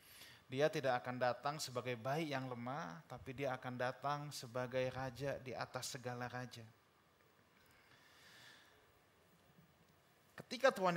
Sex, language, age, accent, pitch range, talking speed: male, Indonesian, 30-49, native, 125-165 Hz, 110 wpm